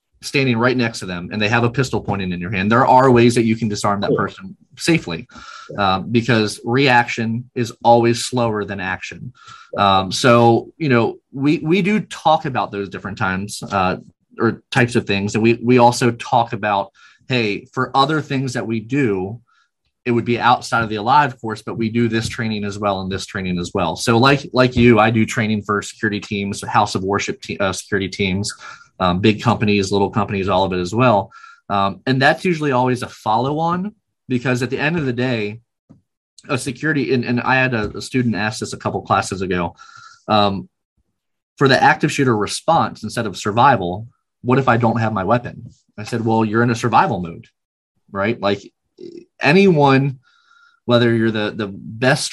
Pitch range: 105-130 Hz